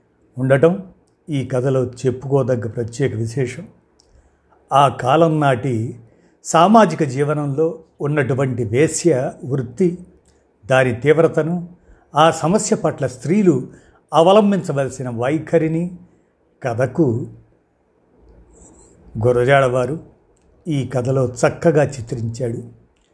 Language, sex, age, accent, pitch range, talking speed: Telugu, male, 50-69, native, 125-165 Hz, 70 wpm